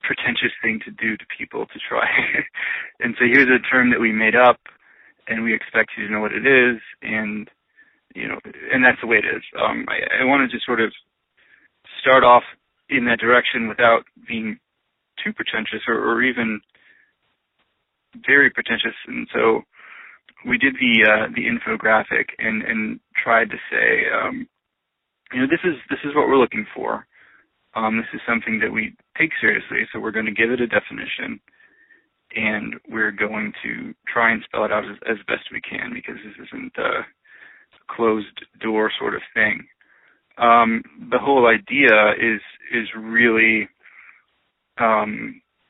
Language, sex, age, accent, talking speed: English, male, 20-39, American, 165 wpm